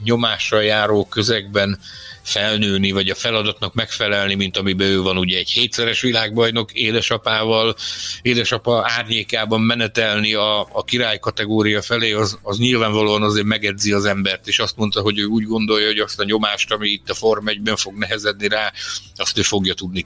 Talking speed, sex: 165 wpm, male